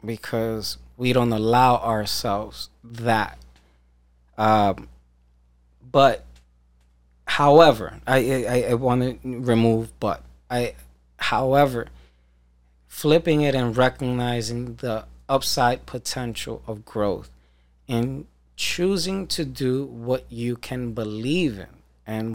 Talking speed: 95 wpm